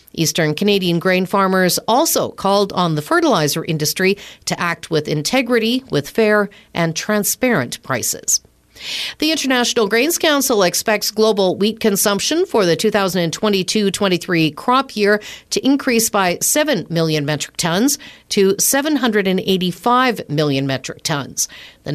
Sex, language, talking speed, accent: female, English, 125 wpm, American